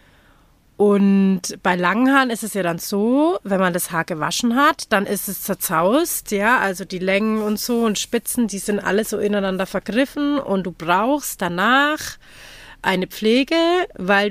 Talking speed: 170 wpm